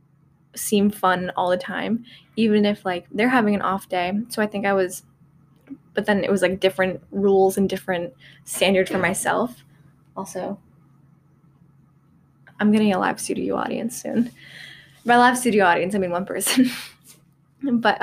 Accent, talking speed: American, 155 wpm